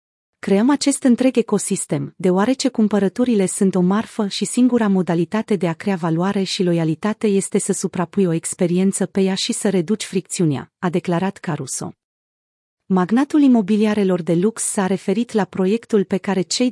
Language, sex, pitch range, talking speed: Romanian, female, 175-220 Hz, 155 wpm